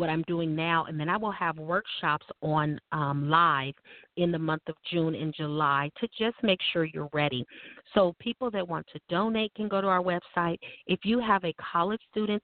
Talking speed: 210 wpm